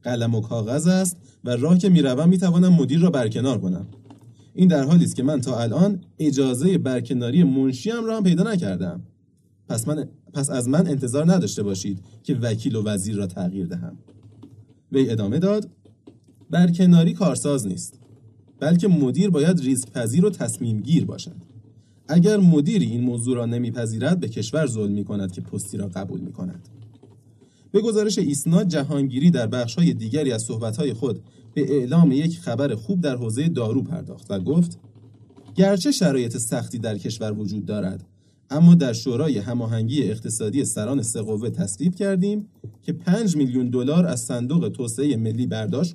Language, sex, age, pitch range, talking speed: Persian, male, 30-49, 115-170 Hz, 160 wpm